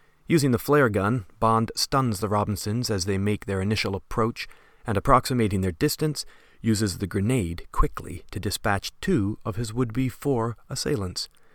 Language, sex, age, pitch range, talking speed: English, male, 40-59, 95-120 Hz, 155 wpm